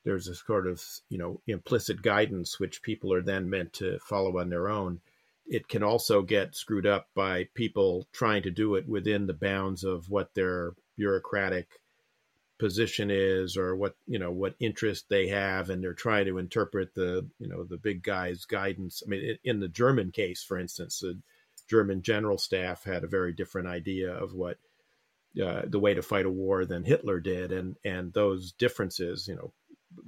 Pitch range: 90-115 Hz